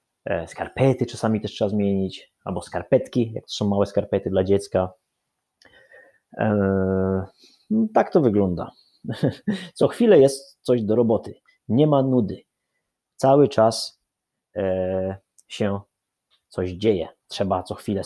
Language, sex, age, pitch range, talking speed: Polish, male, 30-49, 100-125 Hz, 120 wpm